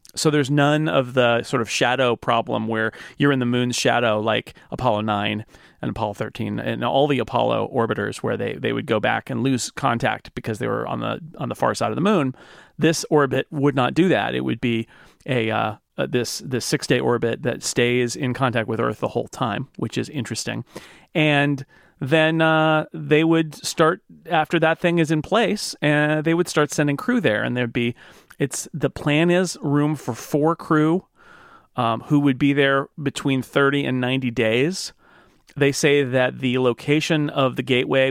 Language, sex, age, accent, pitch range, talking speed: English, male, 30-49, American, 125-160 Hz, 195 wpm